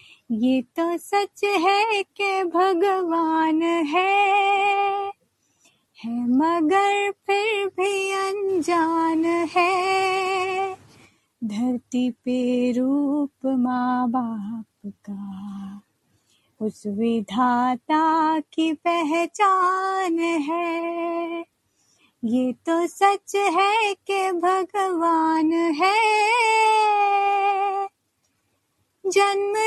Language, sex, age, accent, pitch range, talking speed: Hindi, female, 30-49, native, 325-400 Hz, 65 wpm